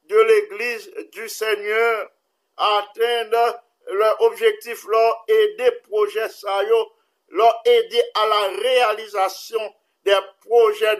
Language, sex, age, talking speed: English, male, 50-69, 110 wpm